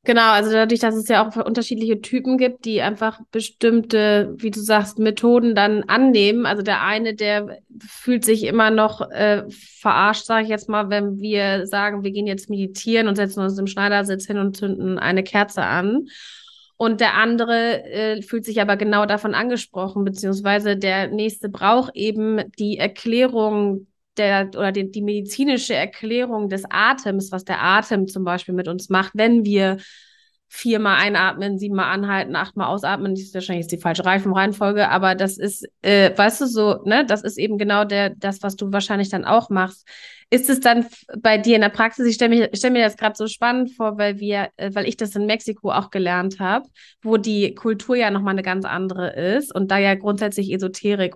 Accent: German